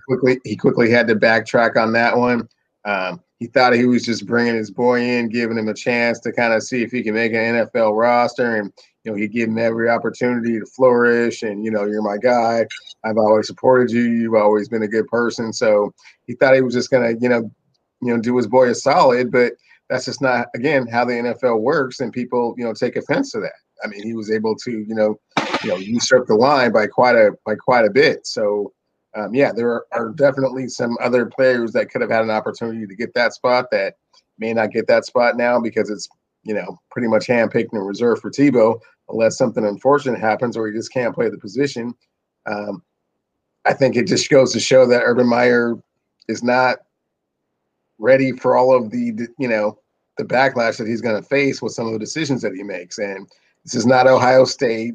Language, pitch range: English, 110-125 Hz